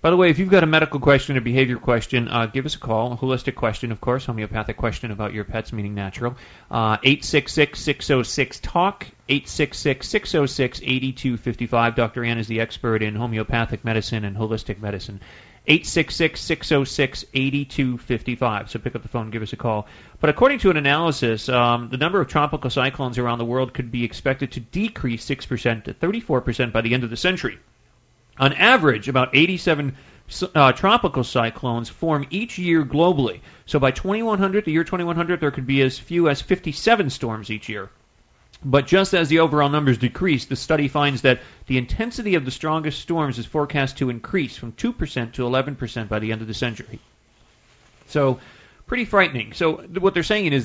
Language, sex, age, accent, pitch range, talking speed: English, male, 30-49, American, 115-155 Hz, 175 wpm